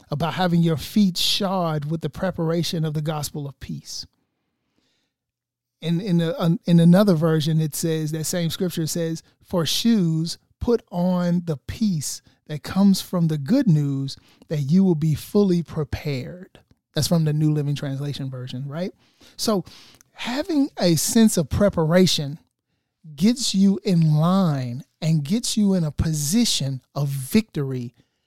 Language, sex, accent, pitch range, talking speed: English, male, American, 145-190 Hz, 140 wpm